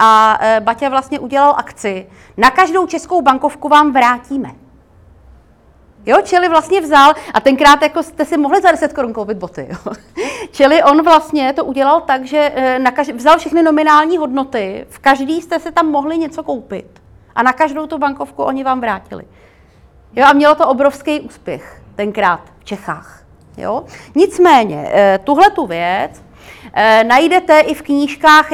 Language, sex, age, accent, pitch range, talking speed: Czech, female, 30-49, native, 220-285 Hz, 150 wpm